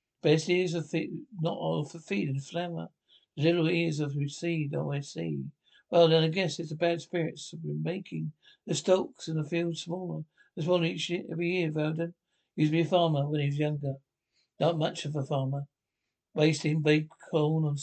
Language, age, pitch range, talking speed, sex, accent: English, 60-79, 155-175 Hz, 205 wpm, male, British